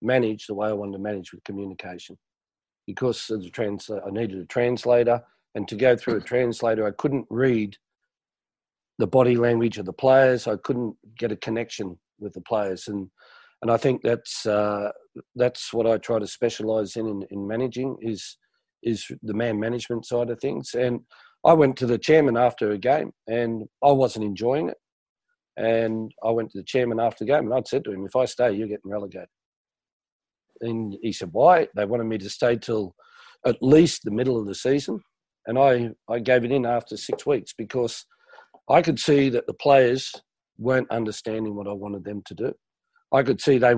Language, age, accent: English, 40-59, Australian